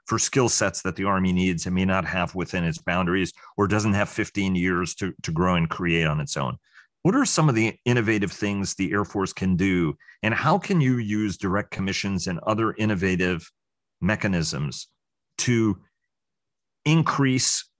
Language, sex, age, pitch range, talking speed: English, male, 40-59, 95-110 Hz, 175 wpm